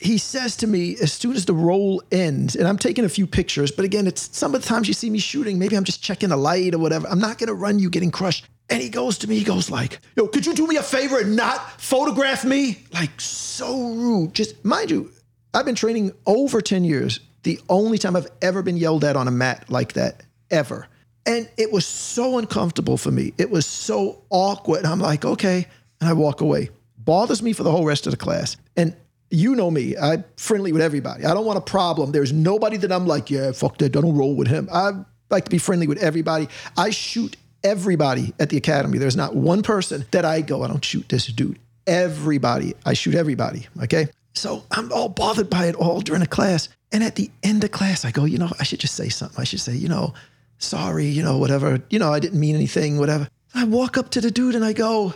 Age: 50-69